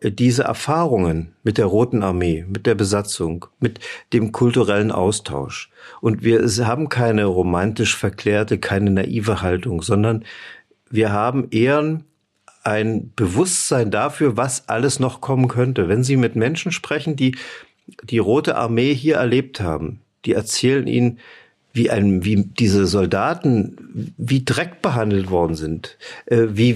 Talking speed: 135 wpm